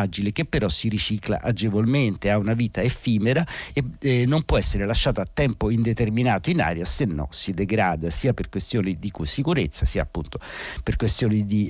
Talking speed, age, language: 180 wpm, 50-69, Italian